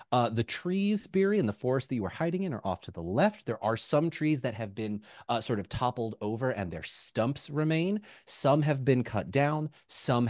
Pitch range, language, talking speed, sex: 95-130 Hz, English, 225 wpm, male